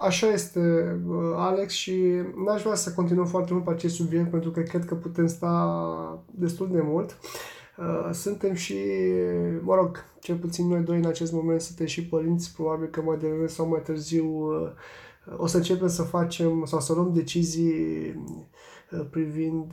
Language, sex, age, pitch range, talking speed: Romanian, male, 20-39, 160-180 Hz, 160 wpm